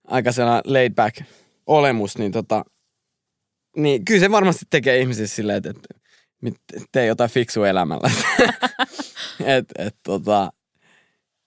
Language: Finnish